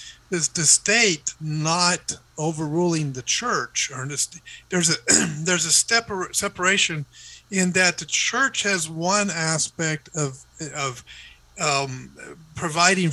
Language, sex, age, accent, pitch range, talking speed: English, male, 50-69, American, 140-175 Hz, 130 wpm